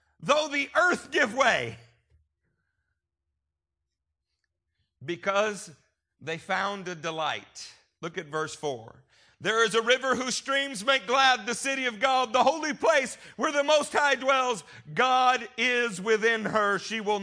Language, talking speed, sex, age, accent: English, 140 wpm, male, 50-69, American